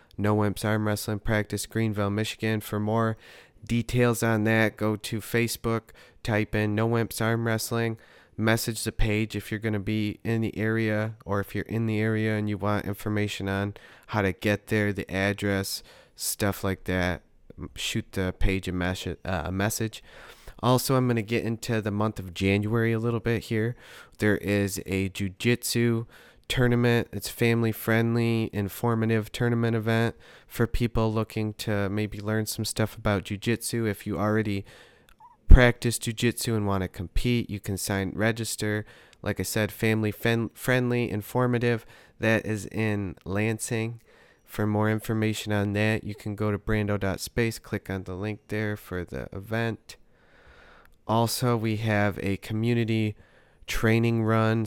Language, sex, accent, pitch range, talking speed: English, male, American, 100-115 Hz, 155 wpm